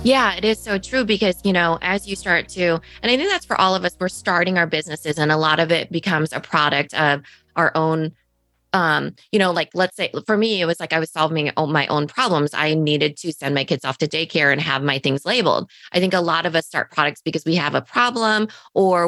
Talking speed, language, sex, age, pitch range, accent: 250 wpm, English, female, 20-39, 150-185 Hz, American